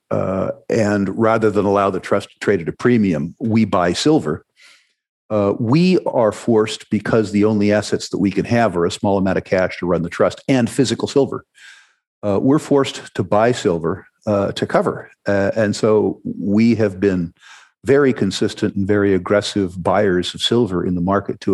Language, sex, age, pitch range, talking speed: English, male, 50-69, 100-120 Hz, 185 wpm